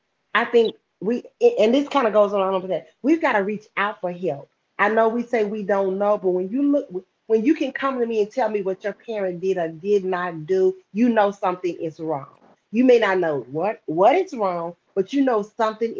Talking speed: 235 wpm